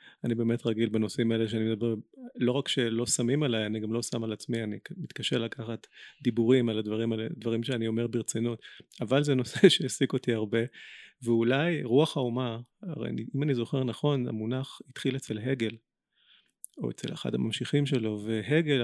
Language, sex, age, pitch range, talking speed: Hebrew, male, 30-49, 115-135 Hz, 170 wpm